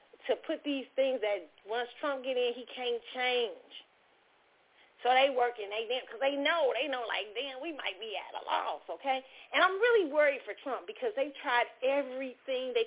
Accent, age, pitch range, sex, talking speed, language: American, 40-59, 235-385 Hz, female, 190 wpm, English